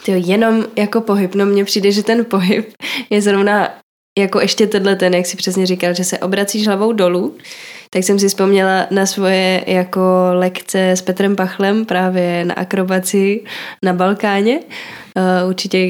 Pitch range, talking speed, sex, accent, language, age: 185-210 Hz, 160 wpm, female, native, Czech, 10-29